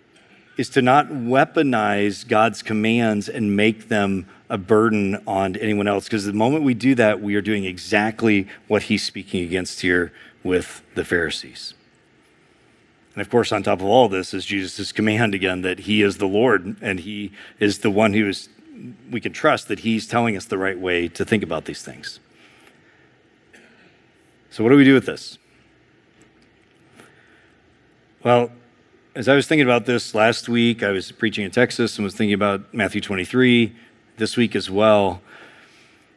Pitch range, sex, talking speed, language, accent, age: 100-125 Hz, male, 170 wpm, English, American, 40-59